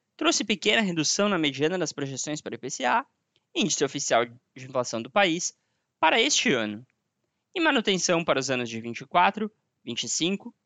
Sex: male